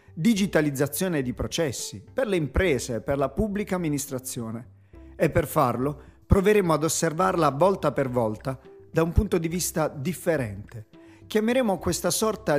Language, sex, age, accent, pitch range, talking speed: Italian, male, 40-59, native, 110-180 Hz, 135 wpm